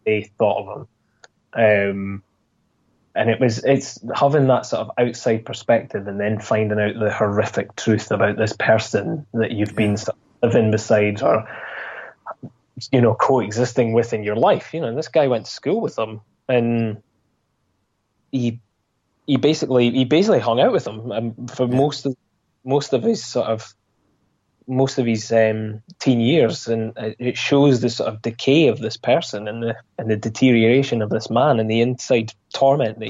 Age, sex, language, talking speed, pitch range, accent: 20-39, male, English, 165 wpm, 105-125 Hz, British